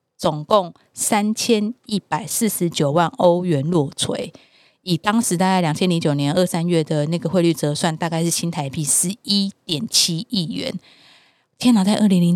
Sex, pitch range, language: female, 155-200 Hz, Chinese